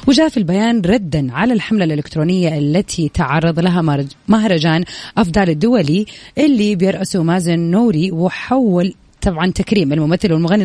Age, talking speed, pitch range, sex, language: 30-49, 125 wpm, 165-225 Hz, female, Arabic